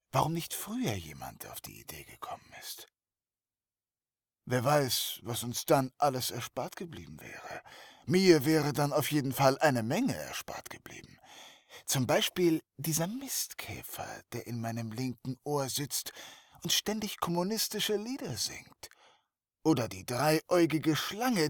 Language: German